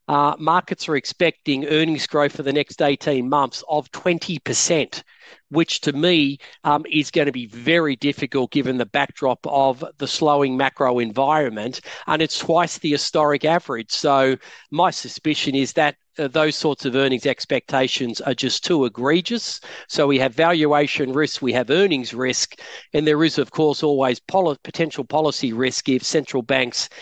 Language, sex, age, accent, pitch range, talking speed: English, male, 40-59, Australian, 130-150 Hz, 160 wpm